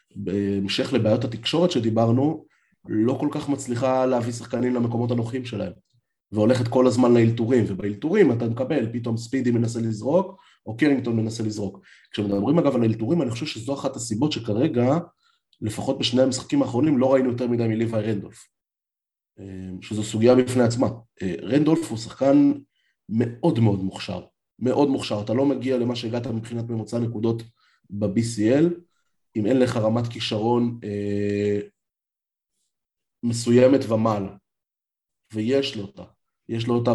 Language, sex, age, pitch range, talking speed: Hebrew, male, 30-49, 105-125 Hz, 130 wpm